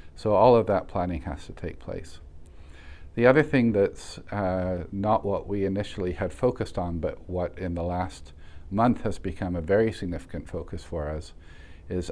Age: 50-69